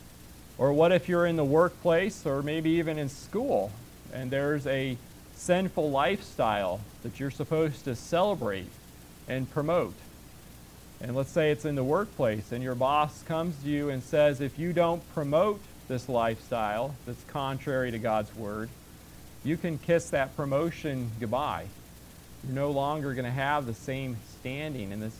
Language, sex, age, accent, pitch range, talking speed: English, male, 40-59, American, 120-155 Hz, 160 wpm